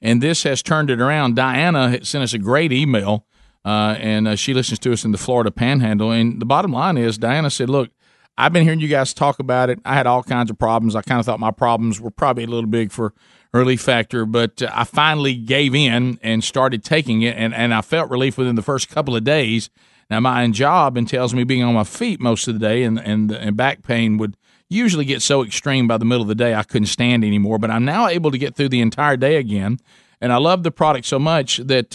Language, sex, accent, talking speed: English, male, American, 250 wpm